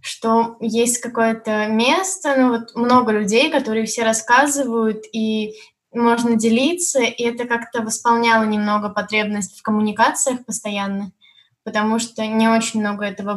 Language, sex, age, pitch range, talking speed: Russian, female, 10-29, 210-235 Hz, 130 wpm